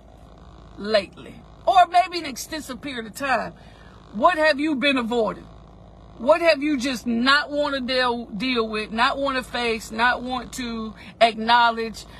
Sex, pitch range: female, 235-320 Hz